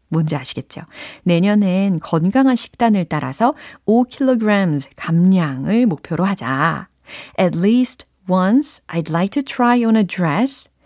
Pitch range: 165-250 Hz